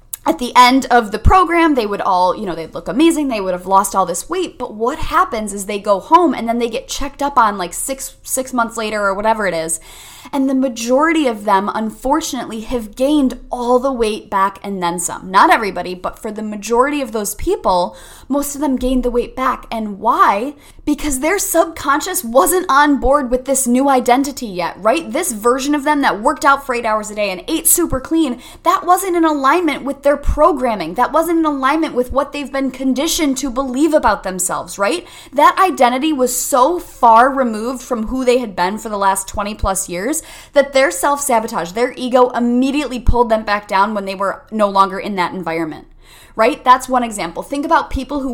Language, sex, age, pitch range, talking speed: English, female, 10-29, 215-280 Hz, 210 wpm